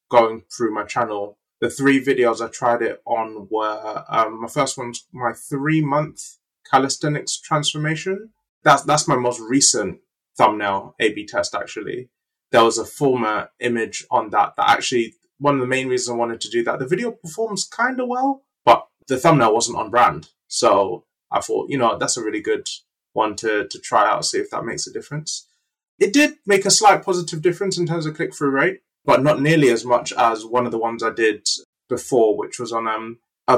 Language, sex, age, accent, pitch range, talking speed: English, male, 20-39, British, 120-170 Hz, 195 wpm